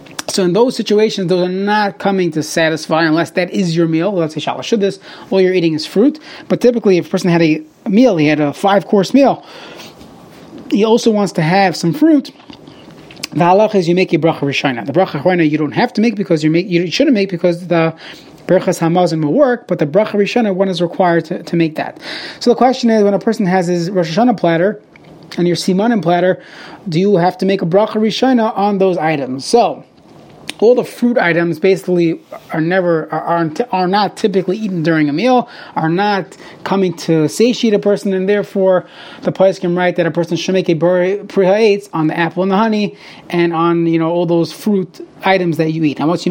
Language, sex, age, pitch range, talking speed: English, male, 30-49, 170-215 Hz, 215 wpm